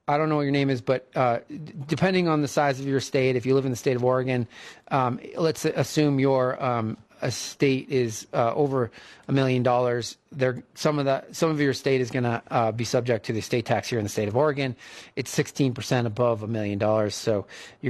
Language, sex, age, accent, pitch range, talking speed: English, male, 30-49, American, 120-140 Hz, 230 wpm